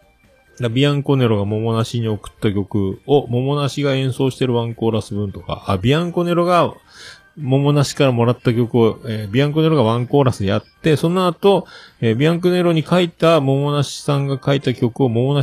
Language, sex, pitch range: Japanese, male, 105-155 Hz